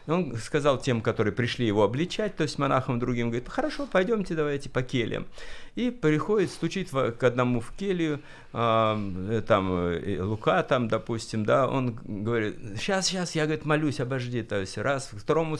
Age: 50-69